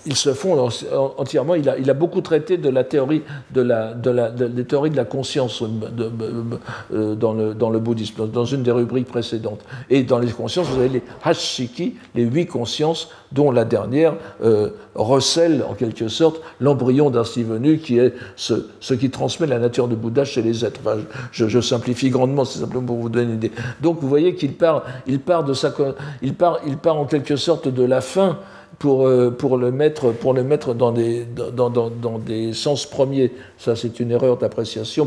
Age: 60-79